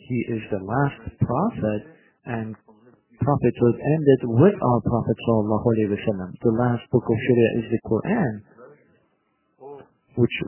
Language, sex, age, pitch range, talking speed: Turkish, male, 50-69, 110-135 Hz, 125 wpm